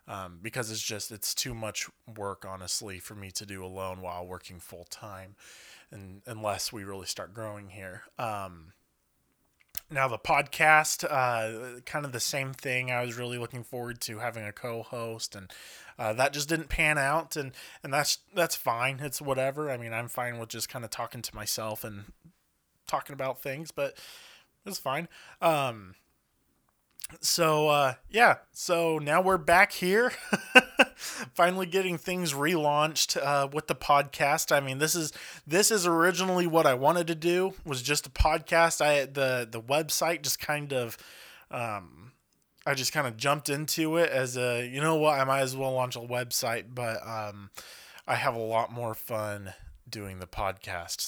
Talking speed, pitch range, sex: 170 wpm, 105-155 Hz, male